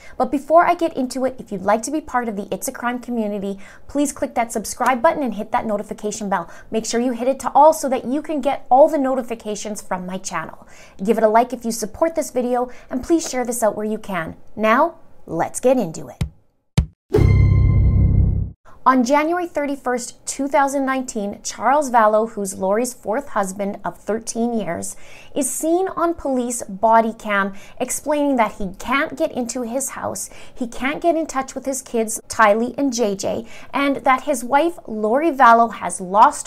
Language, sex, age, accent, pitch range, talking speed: English, female, 20-39, American, 215-275 Hz, 190 wpm